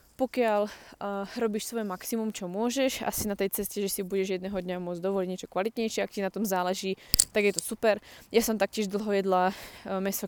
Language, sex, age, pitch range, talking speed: Slovak, female, 20-39, 185-210 Hz, 210 wpm